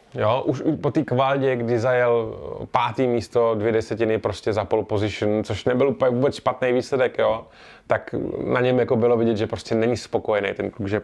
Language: Czech